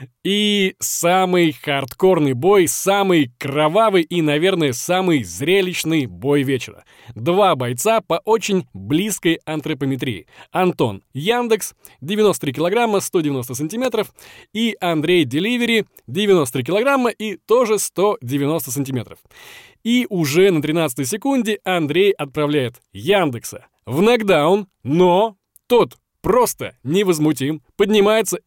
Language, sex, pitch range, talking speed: Russian, male, 140-200 Hz, 100 wpm